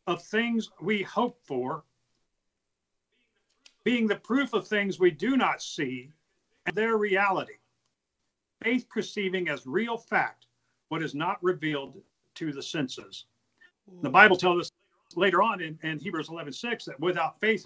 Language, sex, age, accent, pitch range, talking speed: English, male, 50-69, American, 150-220 Hz, 145 wpm